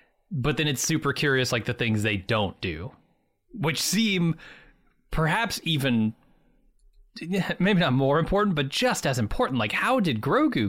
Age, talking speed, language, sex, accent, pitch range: 30-49, 150 wpm, English, male, American, 110-165 Hz